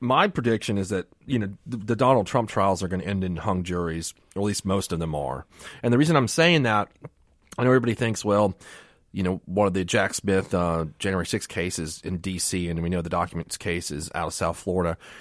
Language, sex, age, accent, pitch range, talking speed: English, male, 30-49, American, 90-120 Hz, 235 wpm